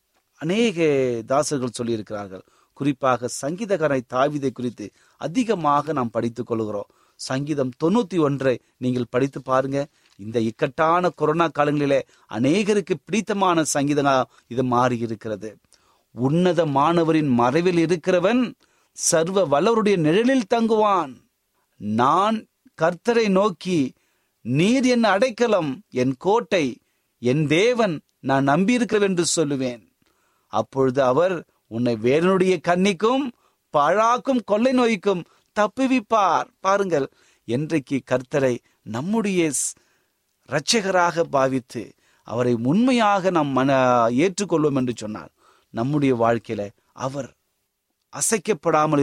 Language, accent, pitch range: Tamil, native, 125-185 Hz